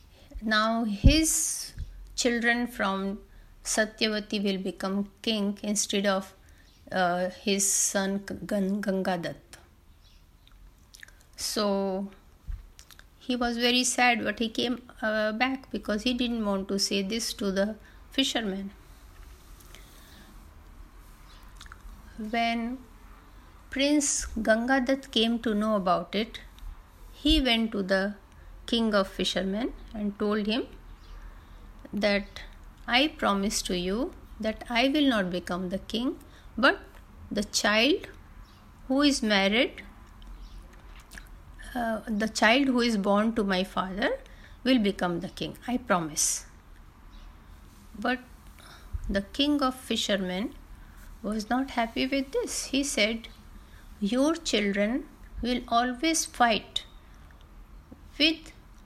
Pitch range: 185-245 Hz